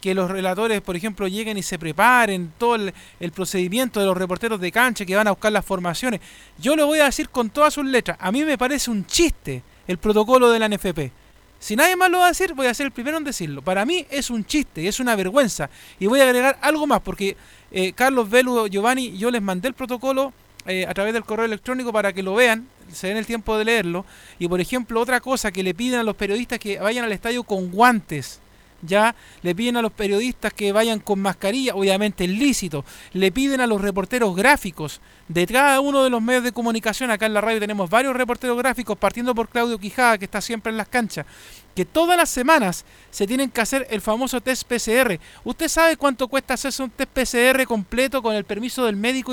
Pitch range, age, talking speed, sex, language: 195-265 Hz, 40-59, 225 wpm, male, Spanish